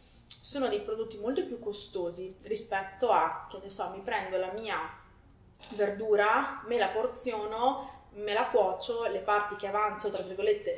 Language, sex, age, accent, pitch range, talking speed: Italian, female, 20-39, native, 190-245 Hz, 155 wpm